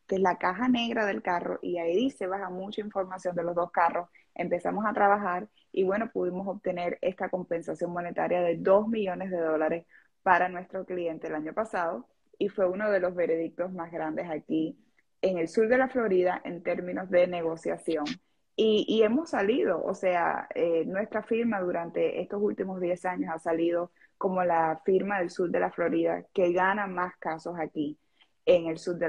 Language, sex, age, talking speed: Spanish, female, 20-39, 180 wpm